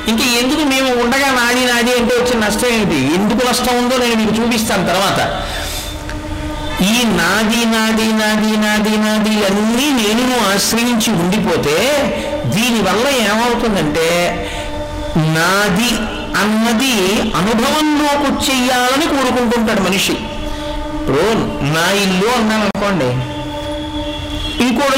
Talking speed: 100 wpm